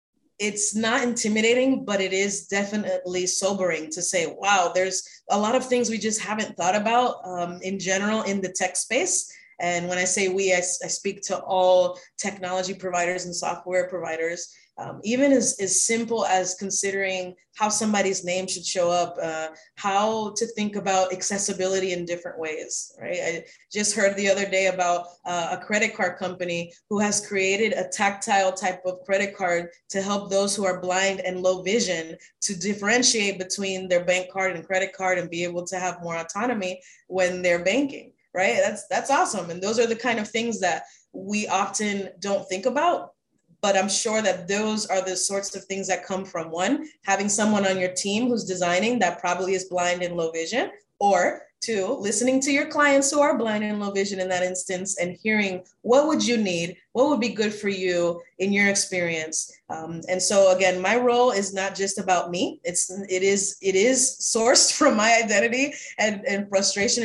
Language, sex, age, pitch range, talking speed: English, female, 20-39, 180-215 Hz, 190 wpm